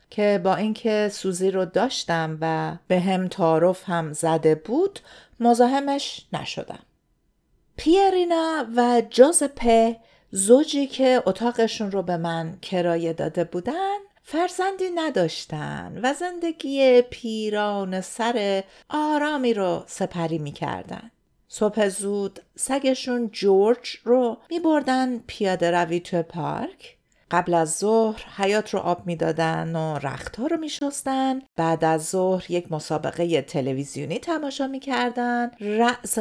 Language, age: Persian, 50-69